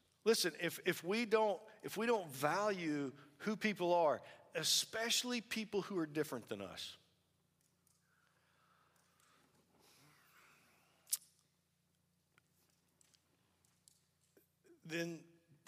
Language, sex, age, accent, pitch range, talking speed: English, male, 50-69, American, 125-185 Hz, 75 wpm